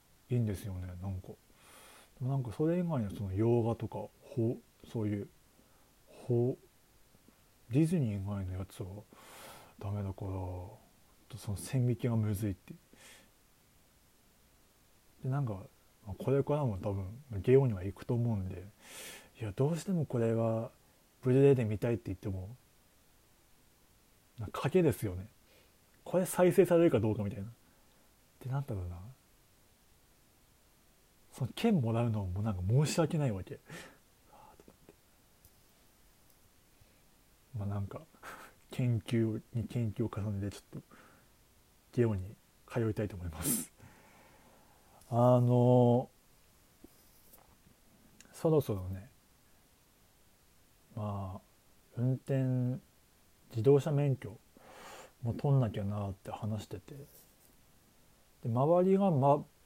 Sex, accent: male, native